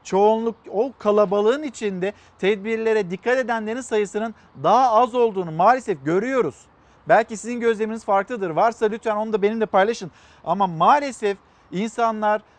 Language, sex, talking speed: Turkish, male, 125 wpm